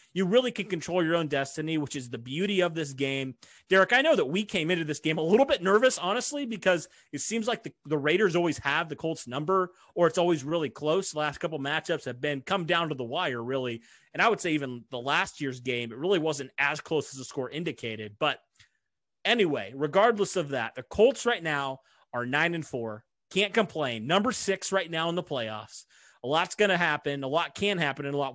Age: 30-49